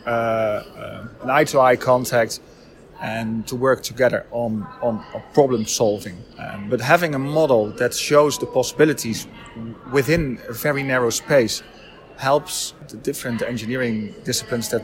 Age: 30-49